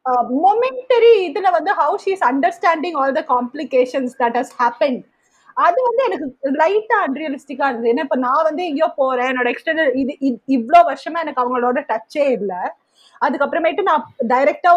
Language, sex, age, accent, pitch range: Tamil, female, 30-49, native, 250-345 Hz